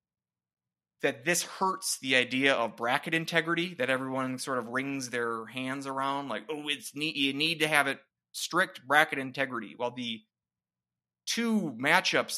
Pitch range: 115-145 Hz